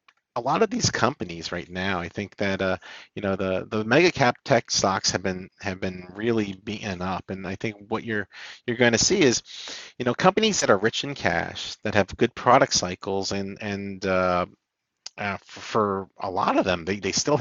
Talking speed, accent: 210 wpm, American